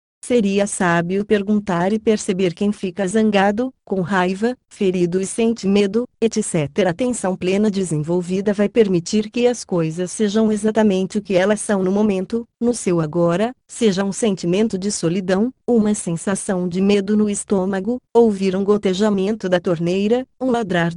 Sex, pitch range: female, 180-220 Hz